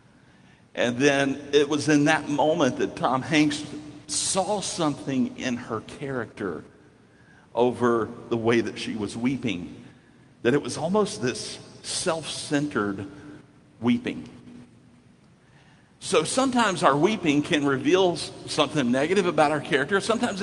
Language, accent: English, American